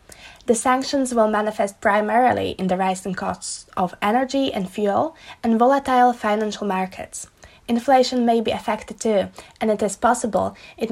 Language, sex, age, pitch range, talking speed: Slovak, female, 20-39, 205-250 Hz, 150 wpm